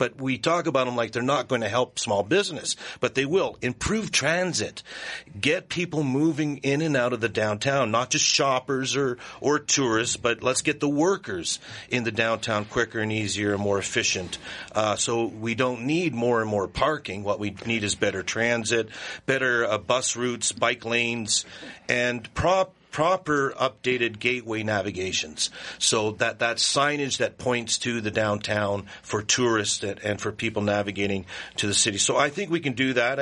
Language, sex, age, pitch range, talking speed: English, male, 50-69, 105-130 Hz, 180 wpm